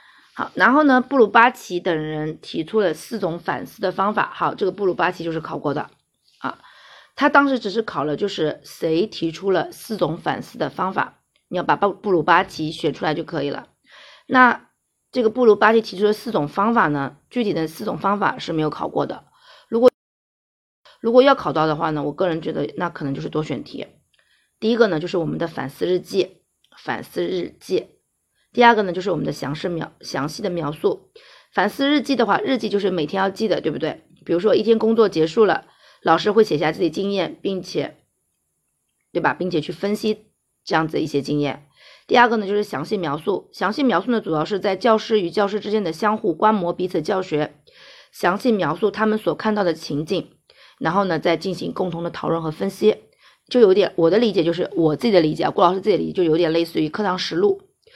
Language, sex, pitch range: Chinese, female, 160-220 Hz